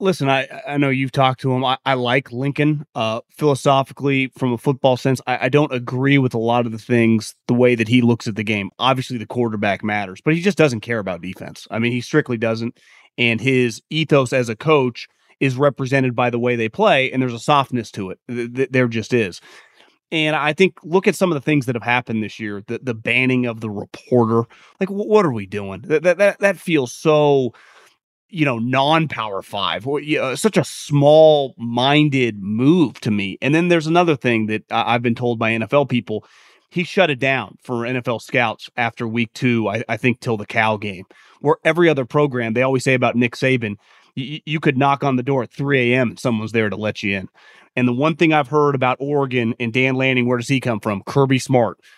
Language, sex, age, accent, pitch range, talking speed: English, male, 30-49, American, 115-145 Hz, 220 wpm